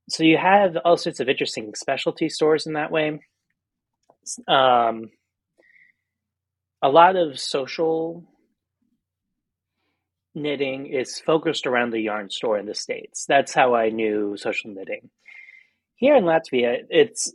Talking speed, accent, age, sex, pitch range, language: 130 wpm, American, 30-49, male, 115-155 Hz, English